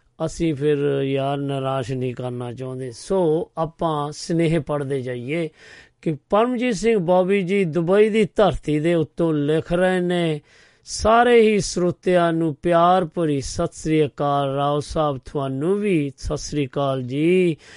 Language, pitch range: Punjabi, 135-165 Hz